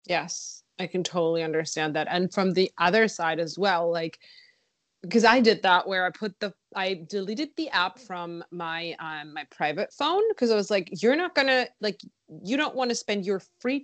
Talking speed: 205 wpm